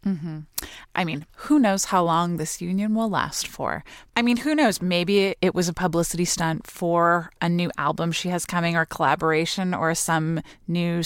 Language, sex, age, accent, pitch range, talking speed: English, female, 20-39, American, 165-195 Hz, 185 wpm